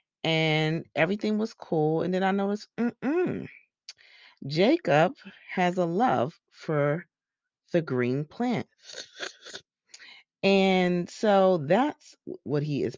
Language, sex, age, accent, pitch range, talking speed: English, female, 30-49, American, 130-190 Hz, 105 wpm